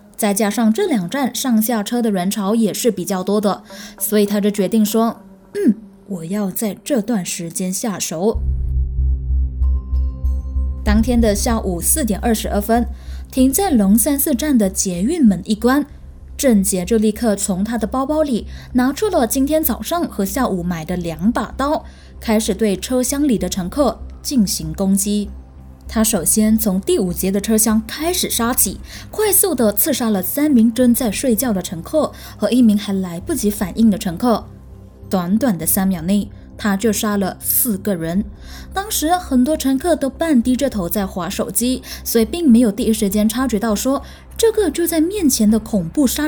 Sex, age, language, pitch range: female, 10-29, Chinese, 195-255 Hz